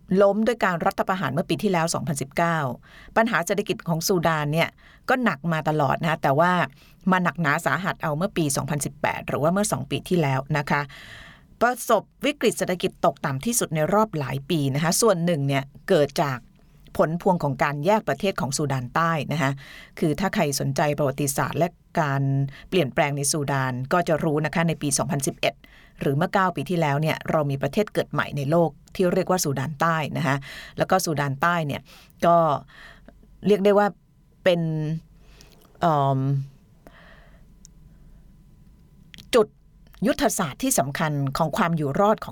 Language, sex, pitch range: Thai, female, 145-180 Hz